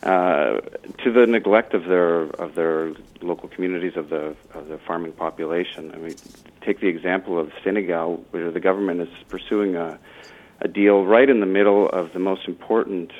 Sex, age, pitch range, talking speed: male, 40-59, 85-100 Hz, 175 wpm